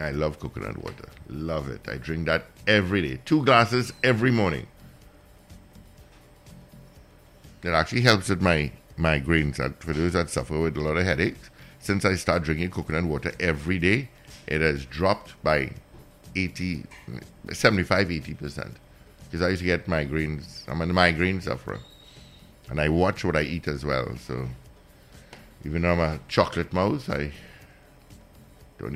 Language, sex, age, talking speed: English, male, 60-79, 145 wpm